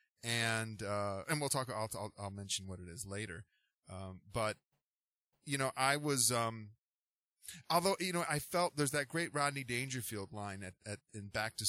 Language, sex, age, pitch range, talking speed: English, male, 30-49, 100-125 Hz, 185 wpm